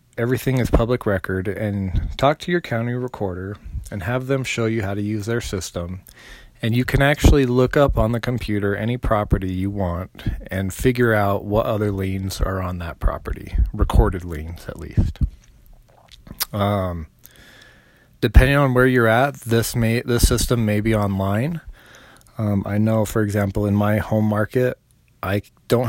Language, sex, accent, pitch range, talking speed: English, male, American, 100-115 Hz, 160 wpm